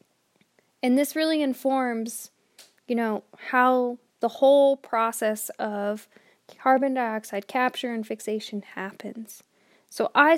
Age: 10-29